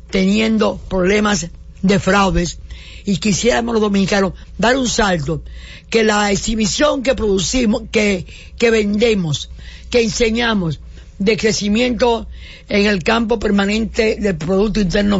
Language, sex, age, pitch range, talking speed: English, female, 50-69, 175-225 Hz, 120 wpm